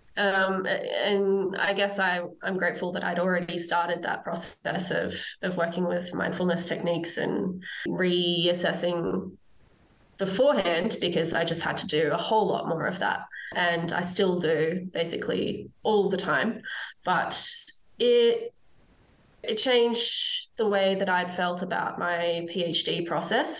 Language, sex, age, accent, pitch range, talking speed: English, female, 20-39, Australian, 175-220 Hz, 140 wpm